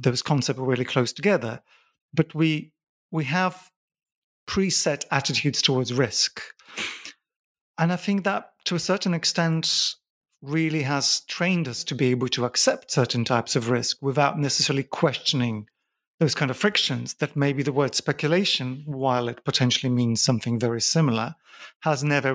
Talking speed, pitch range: 150 wpm, 125-160 Hz